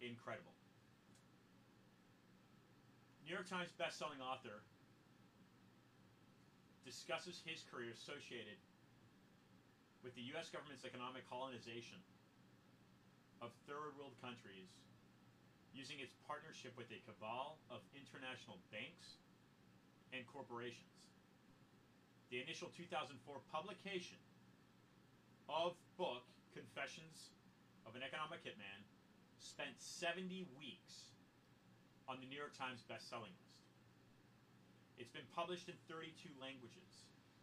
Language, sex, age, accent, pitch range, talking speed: English, male, 40-59, American, 110-155 Hz, 90 wpm